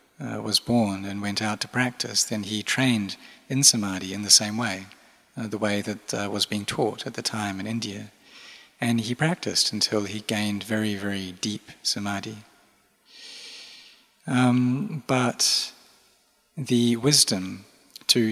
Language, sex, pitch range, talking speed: English, male, 105-125 Hz, 145 wpm